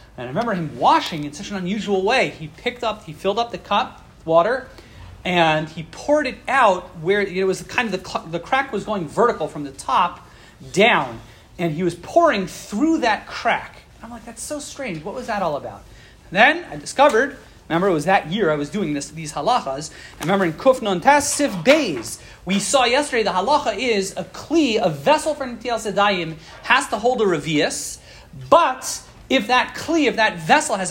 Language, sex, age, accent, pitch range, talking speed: English, male, 40-59, American, 185-260 Hz, 205 wpm